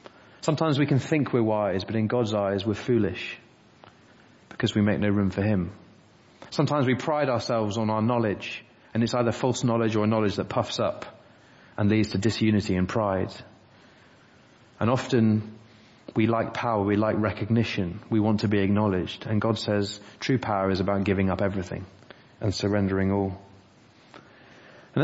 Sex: male